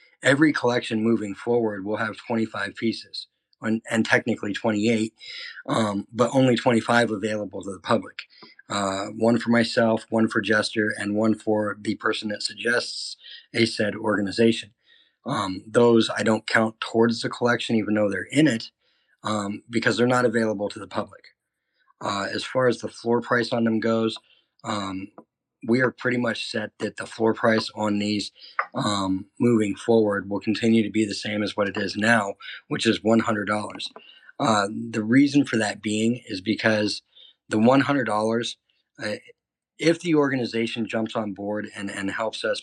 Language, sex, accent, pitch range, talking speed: English, male, American, 105-115 Hz, 165 wpm